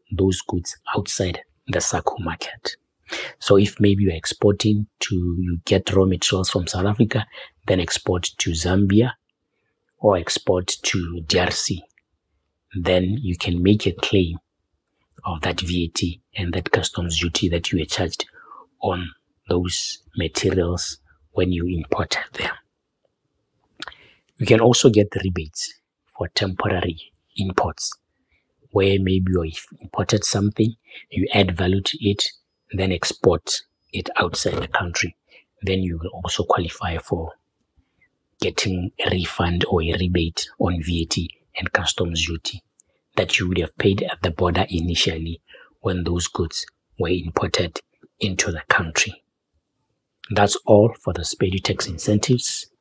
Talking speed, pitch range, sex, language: 135 wpm, 85-100 Hz, male, English